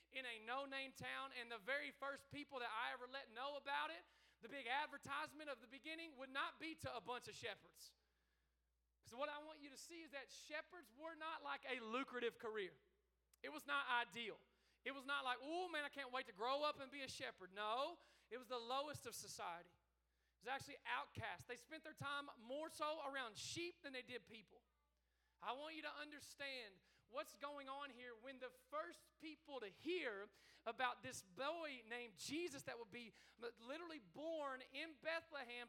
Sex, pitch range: male, 220-285 Hz